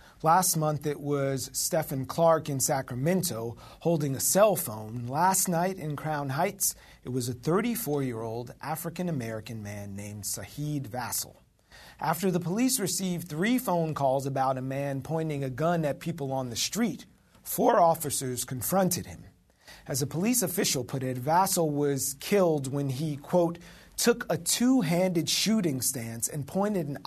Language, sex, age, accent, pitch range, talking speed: English, male, 40-59, American, 130-170 Hz, 150 wpm